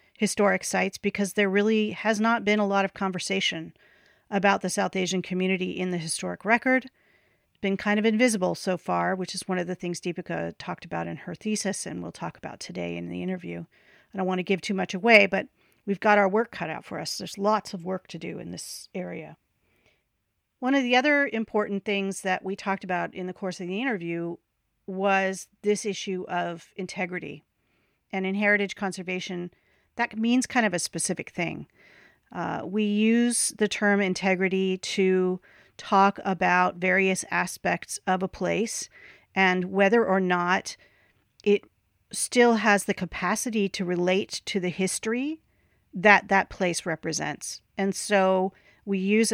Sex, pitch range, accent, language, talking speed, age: female, 180-210 Hz, American, English, 175 wpm, 40-59